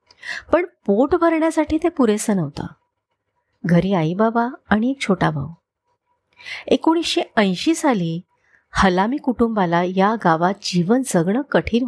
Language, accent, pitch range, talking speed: Marathi, native, 190-270 Hz, 115 wpm